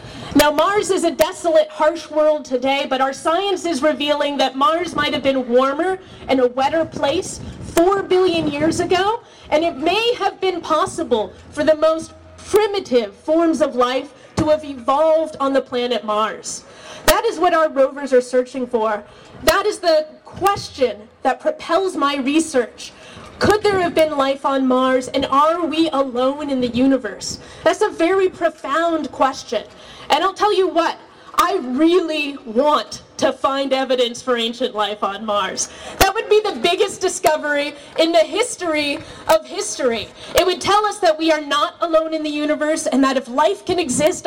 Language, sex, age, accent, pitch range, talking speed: English, female, 30-49, American, 270-340 Hz, 170 wpm